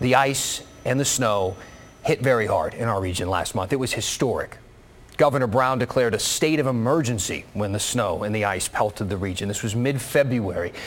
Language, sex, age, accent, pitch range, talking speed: English, male, 30-49, American, 115-150 Hz, 195 wpm